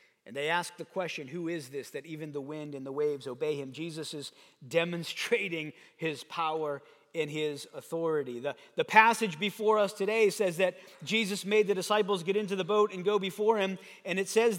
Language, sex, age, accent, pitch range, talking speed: English, male, 40-59, American, 160-200 Hz, 200 wpm